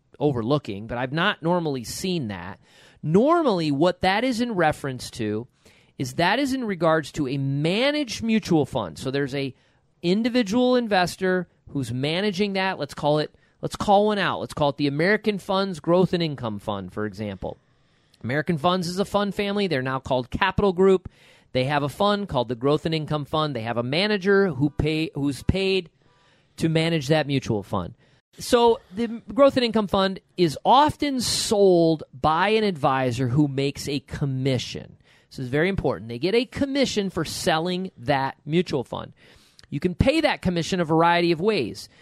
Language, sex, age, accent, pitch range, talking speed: English, male, 40-59, American, 140-200 Hz, 175 wpm